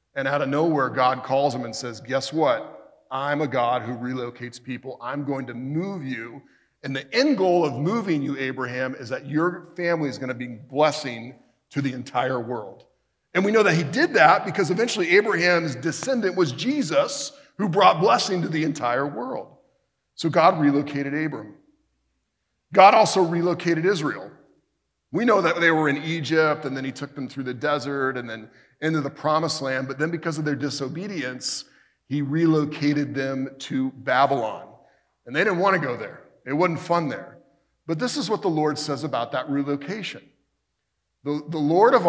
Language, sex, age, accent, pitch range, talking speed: English, male, 40-59, American, 130-160 Hz, 180 wpm